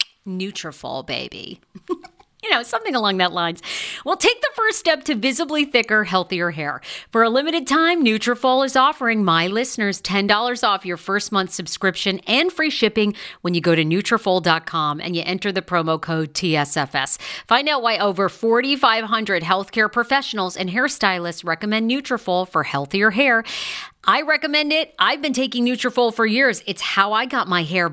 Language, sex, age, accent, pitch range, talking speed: English, female, 40-59, American, 175-255 Hz, 165 wpm